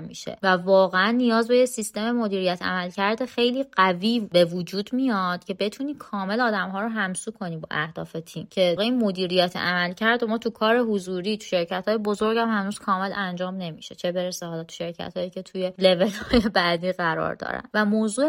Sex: female